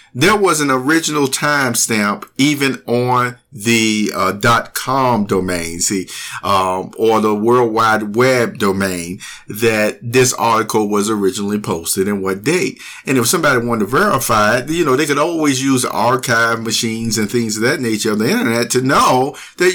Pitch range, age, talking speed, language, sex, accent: 115-150 Hz, 50-69, 165 wpm, English, male, American